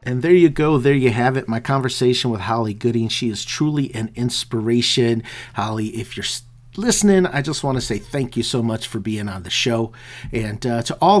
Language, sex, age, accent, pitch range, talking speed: English, male, 50-69, American, 115-140 Hz, 215 wpm